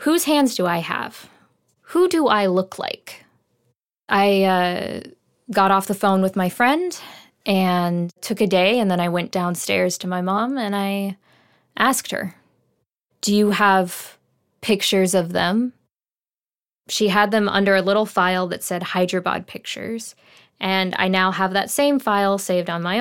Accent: American